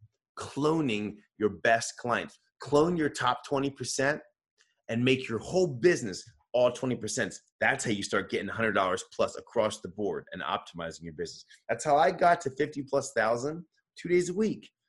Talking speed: 165 wpm